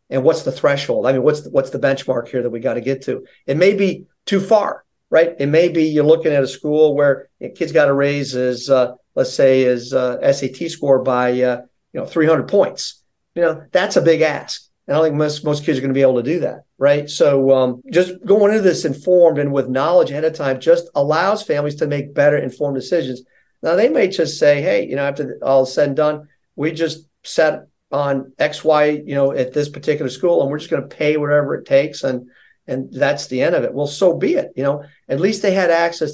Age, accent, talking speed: 40-59, American, 245 wpm